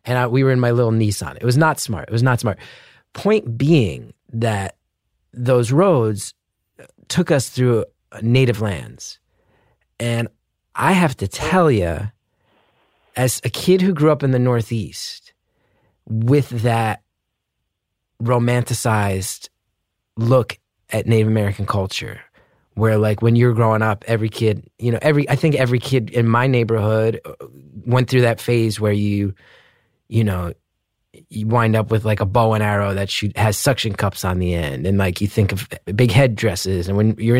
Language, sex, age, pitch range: English, male, 30-49, 105-125 Hz